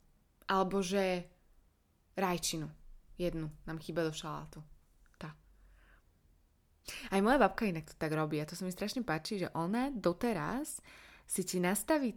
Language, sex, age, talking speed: Slovak, female, 20-39, 140 wpm